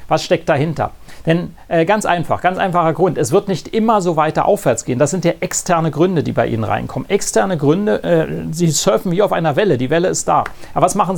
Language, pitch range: German, 135-180 Hz